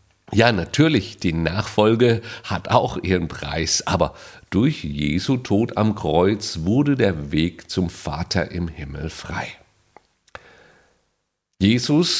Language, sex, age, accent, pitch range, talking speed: German, male, 40-59, German, 95-145 Hz, 115 wpm